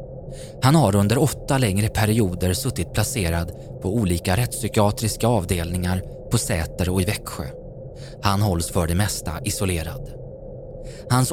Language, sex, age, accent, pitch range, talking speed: Swedish, male, 20-39, native, 95-130 Hz, 125 wpm